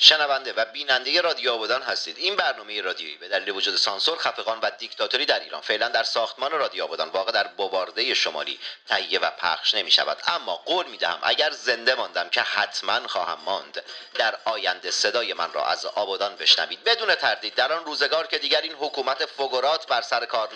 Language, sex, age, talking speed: Persian, male, 40-59, 180 wpm